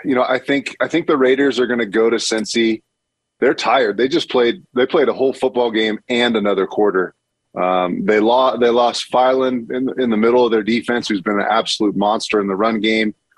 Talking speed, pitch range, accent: 230 wpm, 105-125 Hz, American